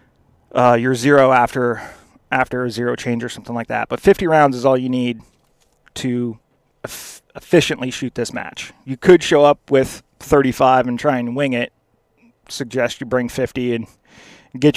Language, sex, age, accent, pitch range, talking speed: English, male, 30-49, American, 125-150 Hz, 165 wpm